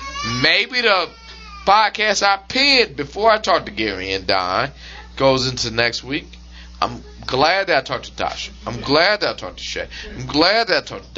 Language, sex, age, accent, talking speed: English, male, 40-59, American, 190 wpm